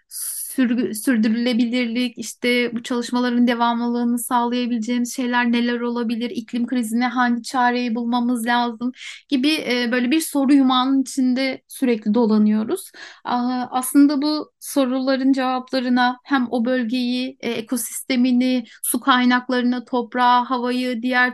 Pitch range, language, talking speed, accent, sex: 240-270 Hz, Turkish, 100 wpm, native, female